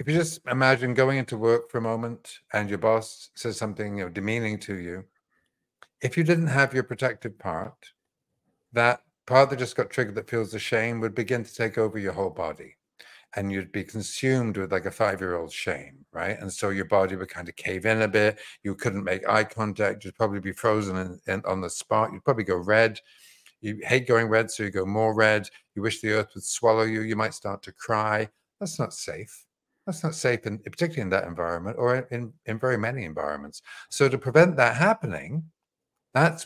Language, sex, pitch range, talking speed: English, male, 100-130 Hz, 205 wpm